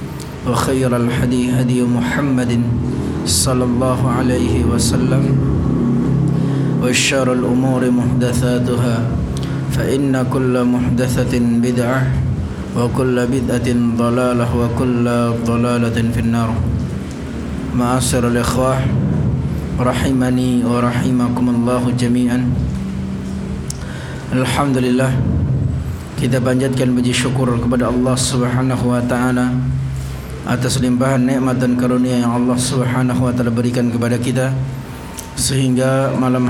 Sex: male